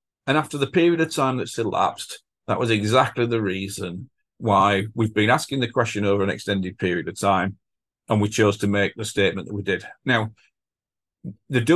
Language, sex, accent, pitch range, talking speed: English, male, British, 105-135 Hz, 190 wpm